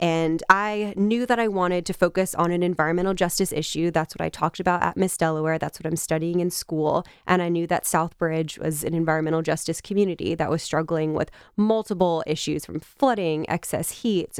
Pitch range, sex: 160-180 Hz, female